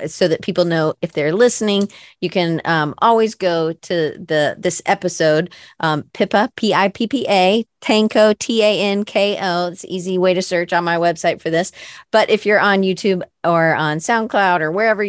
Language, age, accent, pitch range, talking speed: English, 40-59, American, 170-215 Hz, 200 wpm